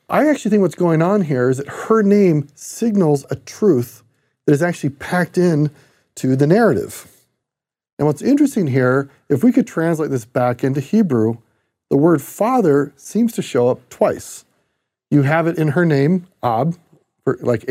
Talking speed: 170 wpm